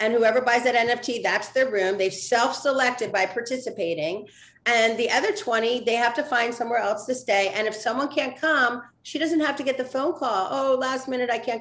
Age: 40-59